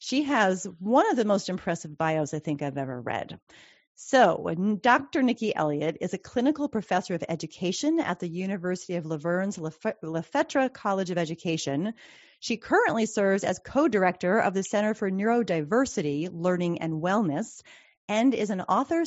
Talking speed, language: 155 wpm, English